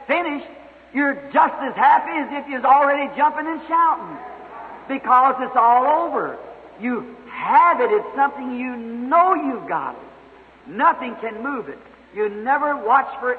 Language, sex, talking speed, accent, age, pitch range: English, male, 150 wpm, American, 50-69, 250-320 Hz